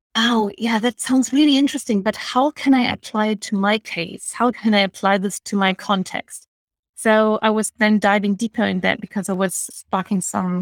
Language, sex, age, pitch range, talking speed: English, female, 30-49, 190-215 Hz, 205 wpm